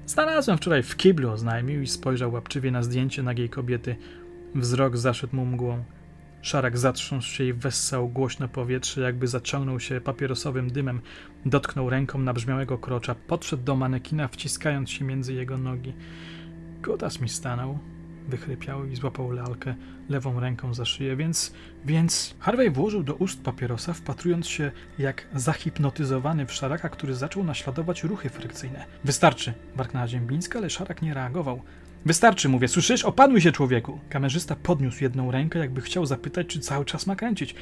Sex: male